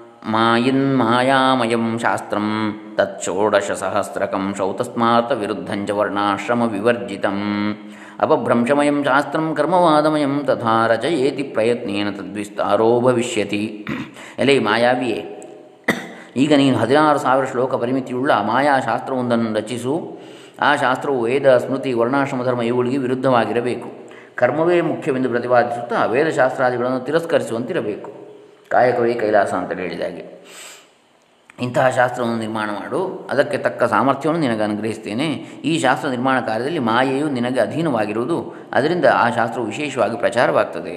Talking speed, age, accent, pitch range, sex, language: 95 wpm, 20-39, native, 110-130 Hz, male, Kannada